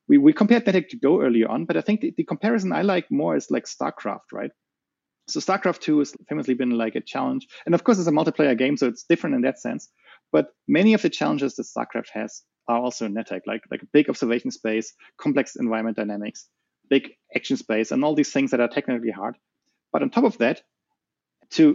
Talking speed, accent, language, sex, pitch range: 220 wpm, German, English, male, 125-195 Hz